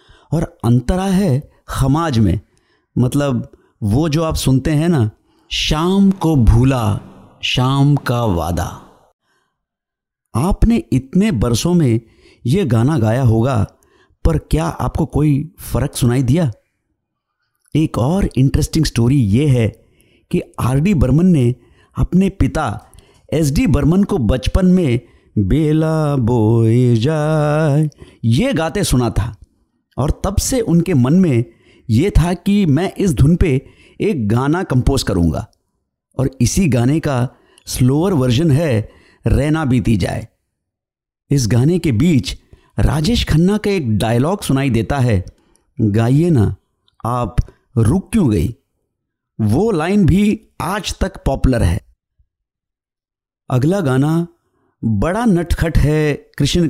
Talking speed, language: 125 wpm, Hindi